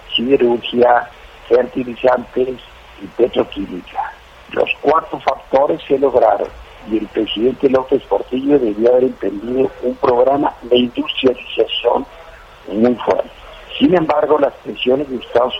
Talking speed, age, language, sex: 110 wpm, 60-79, Spanish, male